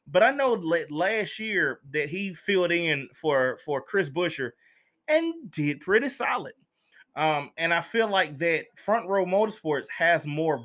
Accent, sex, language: American, male, English